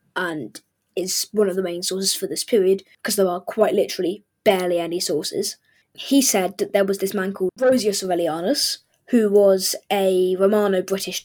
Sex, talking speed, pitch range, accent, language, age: female, 170 wpm, 190-215 Hz, British, English, 10-29